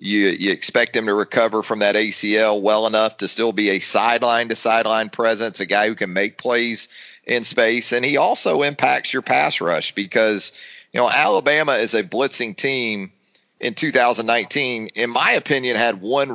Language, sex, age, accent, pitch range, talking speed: English, male, 40-59, American, 100-120 Hz, 180 wpm